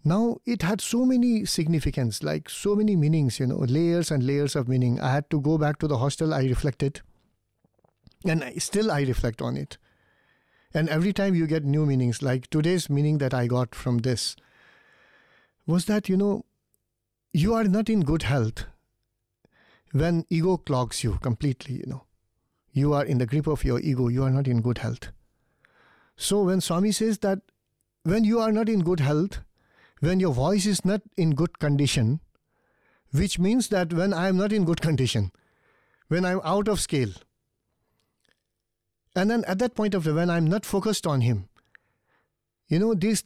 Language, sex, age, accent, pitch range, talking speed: English, male, 60-79, Indian, 125-195 Hz, 185 wpm